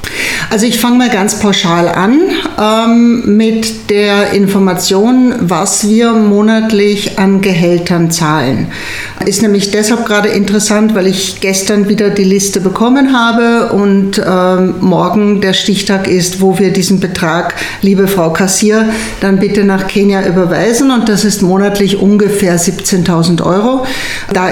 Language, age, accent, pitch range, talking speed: German, 60-79, German, 190-220 Hz, 135 wpm